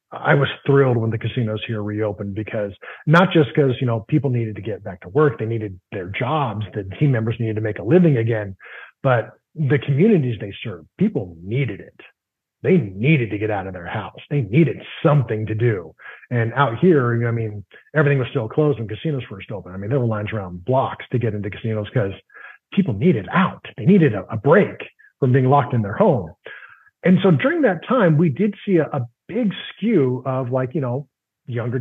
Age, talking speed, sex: 30-49, 210 wpm, male